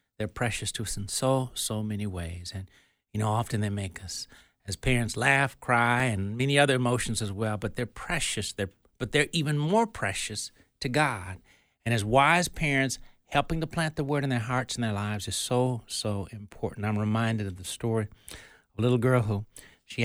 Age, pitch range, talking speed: 60-79, 105-135 Hz, 200 wpm